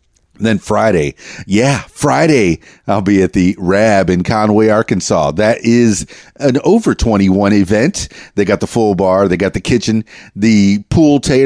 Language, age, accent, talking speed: English, 40-59, American, 145 wpm